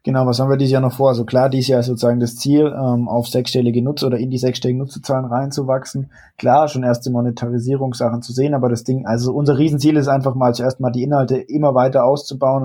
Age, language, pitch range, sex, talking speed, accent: 20-39, German, 120-135 Hz, male, 230 wpm, German